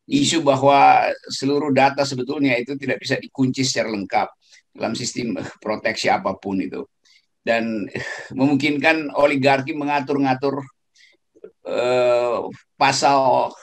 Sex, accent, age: male, native, 50-69